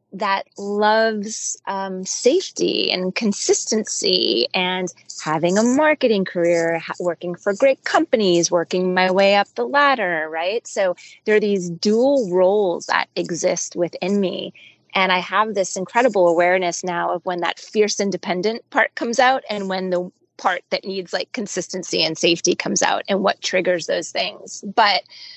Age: 30-49